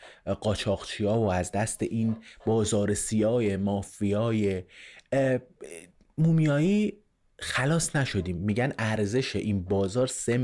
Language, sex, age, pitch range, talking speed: Persian, male, 30-49, 100-140 Hz, 90 wpm